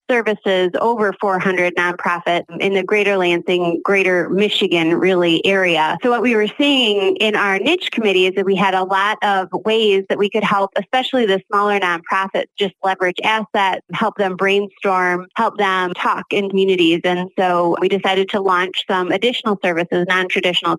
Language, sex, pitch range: English, female, 180-210 Hz